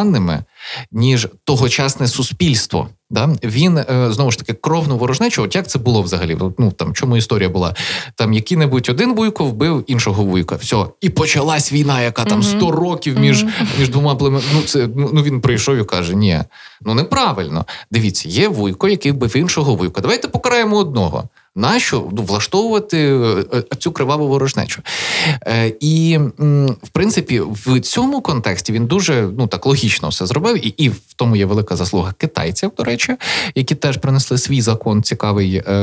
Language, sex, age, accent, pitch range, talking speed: Ukrainian, male, 20-39, native, 105-145 Hz, 155 wpm